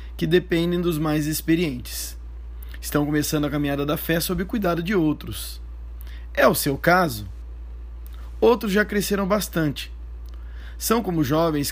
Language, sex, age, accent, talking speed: Portuguese, male, 20-39, Brazilian, 140 wpm